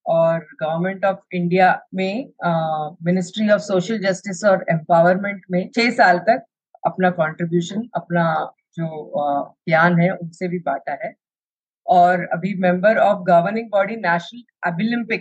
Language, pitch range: Hindi, 180-225 Hz